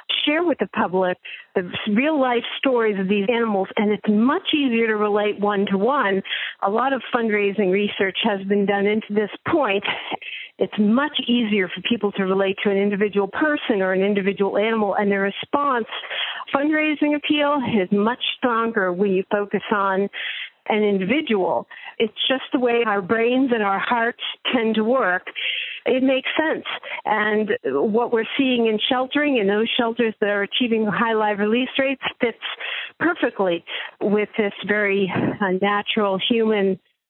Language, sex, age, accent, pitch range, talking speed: English, female, 50-69, American, 200-245 Hz, 160 wpm